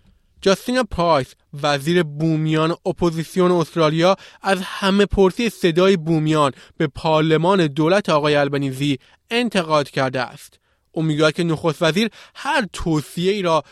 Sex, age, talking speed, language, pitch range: male, 20-39, 115 wpm, Persian, 145-190 Hz